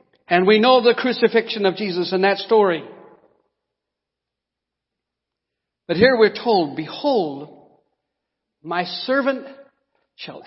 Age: 60-79